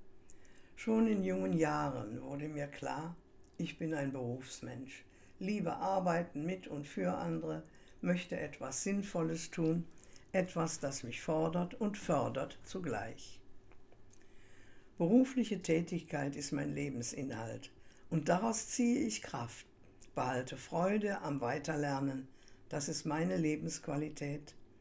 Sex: female